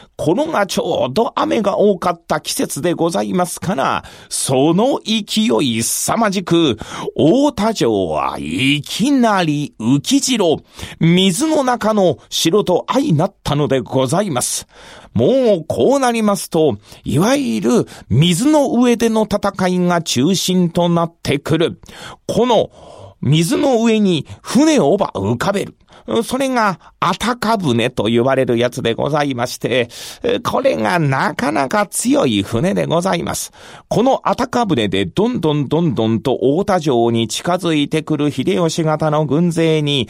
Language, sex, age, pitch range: Japanese, male, 40-59, 145-215 Hz